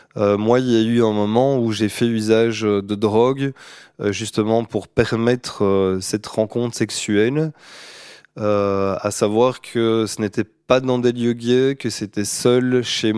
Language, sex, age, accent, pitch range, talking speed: French, male, 20-39, French, 100-115 Hz, 155 wpm